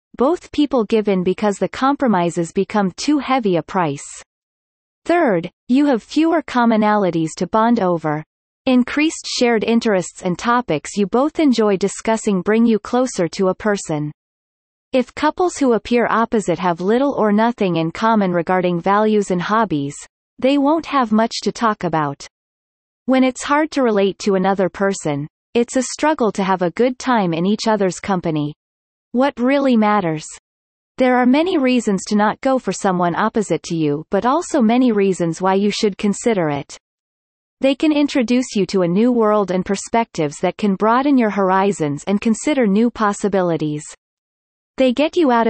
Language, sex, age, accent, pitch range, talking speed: English, female, 30-49, American, 185-250 Hz, 165 wpm